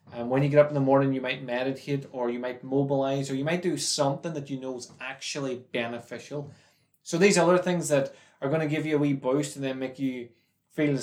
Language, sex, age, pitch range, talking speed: English, male, 20-39, 125-155 Hz, 250 wpm